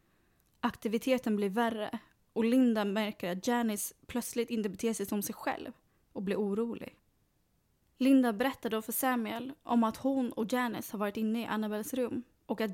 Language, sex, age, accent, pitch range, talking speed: Swedish, female, 20-39, native, 215-250 Hz, 170 wpm